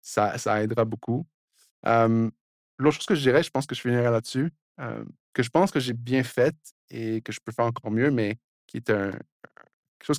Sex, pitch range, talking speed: male, 110-130 Hz, 205 wpm